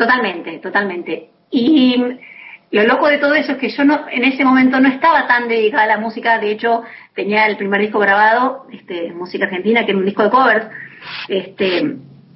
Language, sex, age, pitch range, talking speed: Spanish, female, 40-59, 195-245 Hz, 195 wpm